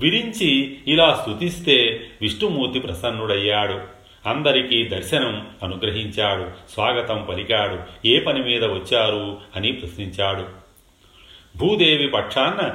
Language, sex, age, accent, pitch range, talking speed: Telugu, male, 40-59, native, 95-120 Hz, 85 wpm